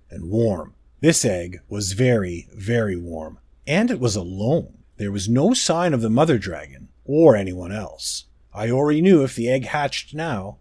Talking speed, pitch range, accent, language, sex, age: 170 wpm, 110-165 Hz, American, English, male, 30-49